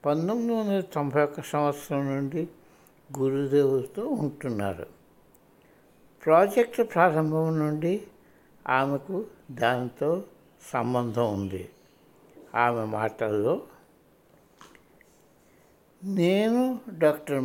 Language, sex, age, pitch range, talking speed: Hindi, male, 60-79, 135-175 Hz, 60 wpm